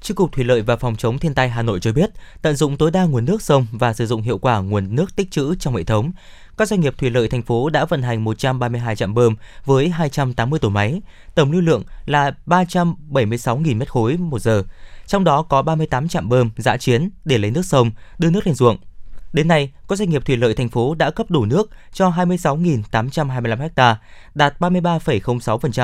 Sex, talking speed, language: male, 210 wpm, Vietnamese